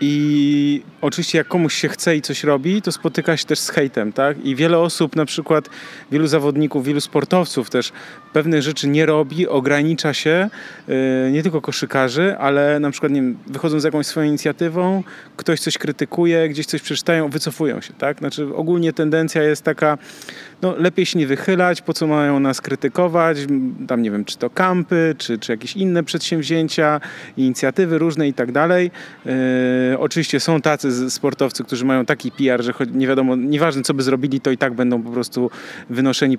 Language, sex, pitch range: Polish, male, 135-165 Hz